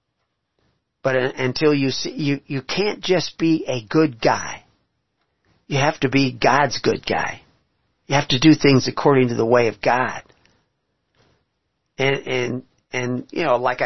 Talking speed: 155 wpm